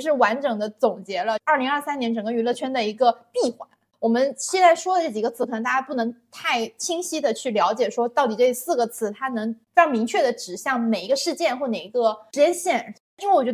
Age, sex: 20-39, female